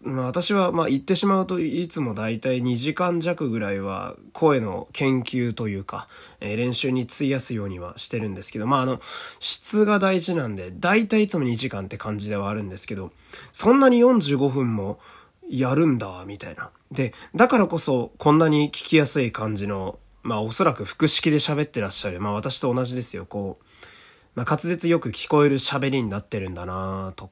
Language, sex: Japanese, male